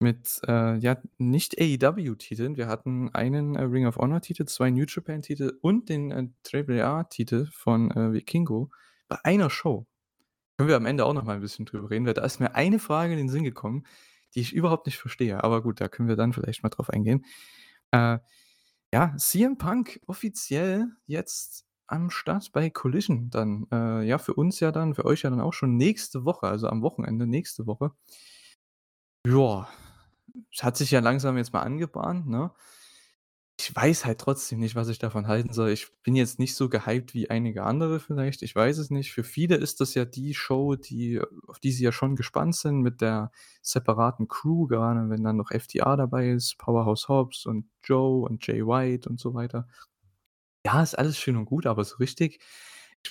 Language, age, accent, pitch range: German, 20-39, German, 115-145 Hz